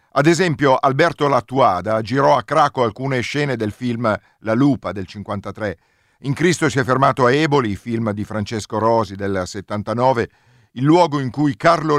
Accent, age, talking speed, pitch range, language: native, 50-69, 165 wpm, 110-140 Hz, Italian